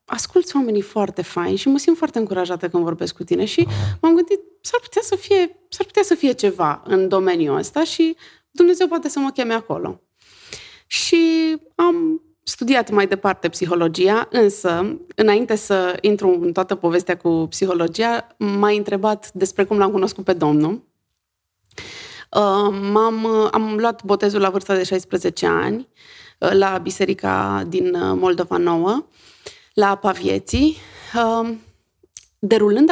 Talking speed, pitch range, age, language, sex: 140 wpm, 180-235 Hz, 20-39, Romanian, female